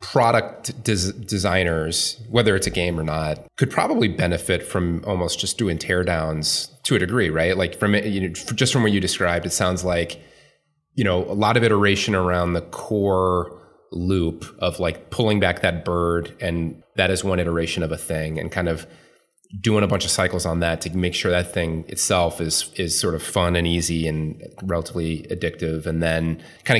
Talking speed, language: 185 wpm, English